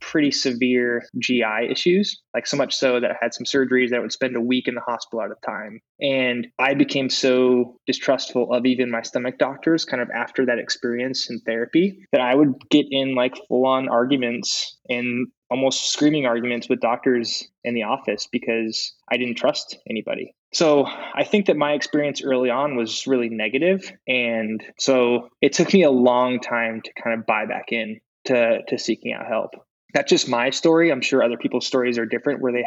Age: 20-39